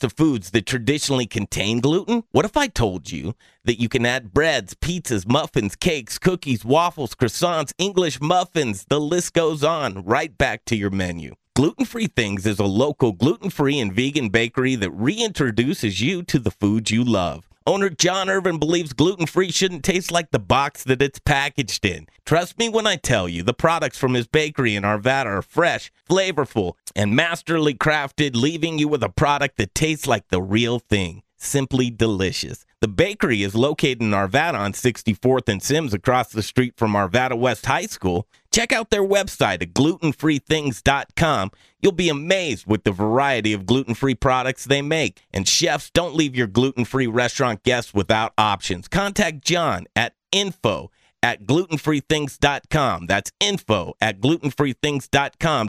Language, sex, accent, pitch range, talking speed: English, male, American, 115-165 Hz, 165 wpm